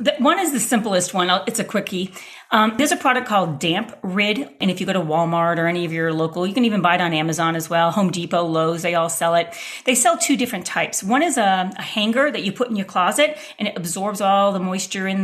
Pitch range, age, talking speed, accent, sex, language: 180-240 Hz, 40-59, 260 wpm, American, female, English